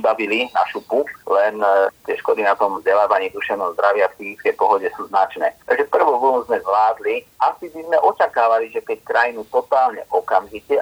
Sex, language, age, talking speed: male, Slovak, 30-49, 165 wpm